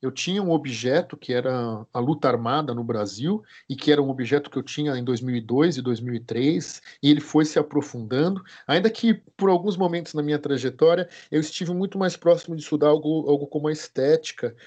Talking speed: 195 wpm